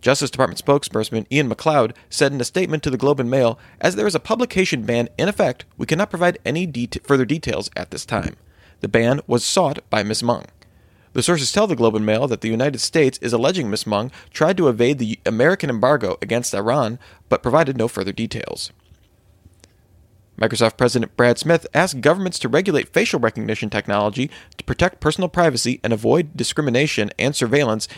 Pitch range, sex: 110-155 Hz, male